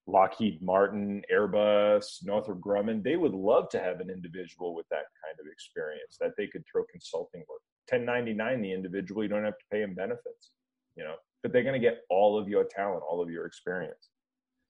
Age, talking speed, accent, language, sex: 30-49, 195 wpm, American, English, male